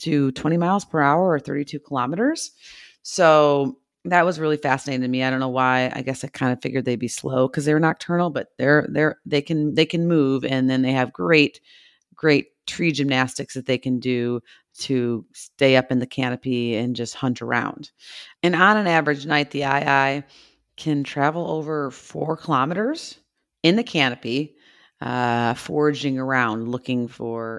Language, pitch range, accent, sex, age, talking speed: English, 130-160 Hz, American, female, 40-59, 175 wpm